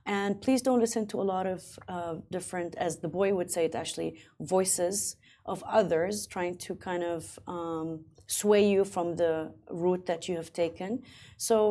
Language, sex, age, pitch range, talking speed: Arabic, female, 30-49, 170-210 Hz, 180 wpm